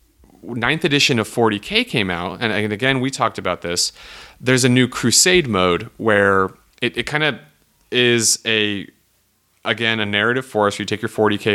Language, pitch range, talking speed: English, 95-115 Hz, 175 wpm